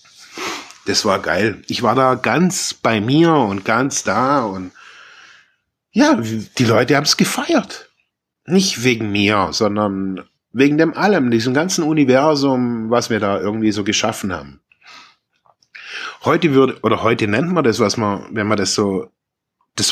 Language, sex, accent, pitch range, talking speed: German, male, German, 100-150 Hz, 150 wpm